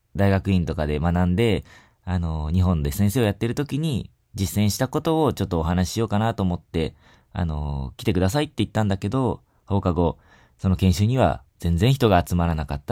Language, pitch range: Japanese, 80-115 Hz